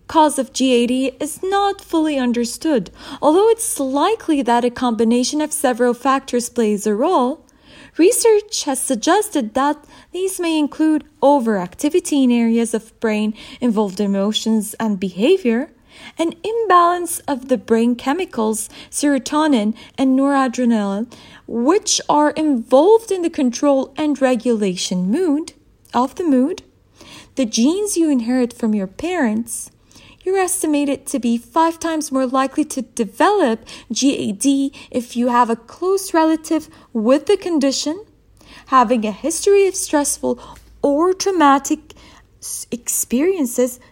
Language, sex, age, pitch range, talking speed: English, female, 20-39, 240-320 Hz, 125 wpm